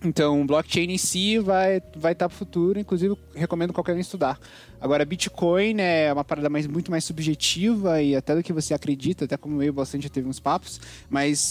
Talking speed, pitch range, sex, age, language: 205 wpm, 140-175 Hz, male, 20-39, Portuguese